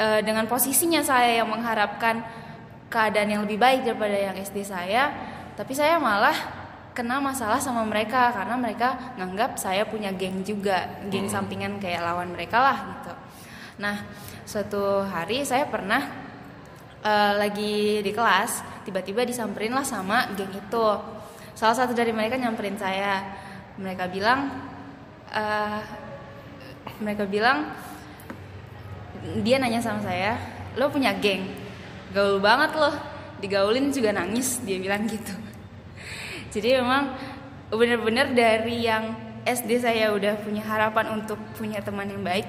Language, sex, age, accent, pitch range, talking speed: Indonesian, female, 10-29, native, 200-240 Hz, 130 wpm